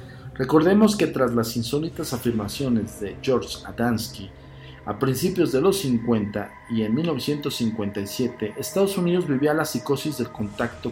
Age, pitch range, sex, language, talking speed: 50-69, 110-150 Hz, male, Spanish, 130 wpm